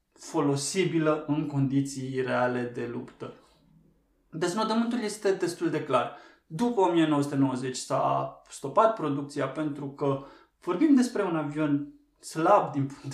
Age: 20-39